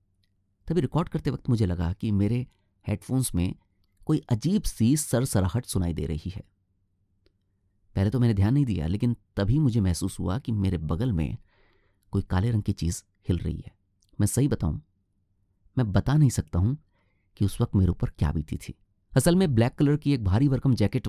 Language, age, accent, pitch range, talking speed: Hindi, 30-49, native, 95-115 Hz, 190 wpm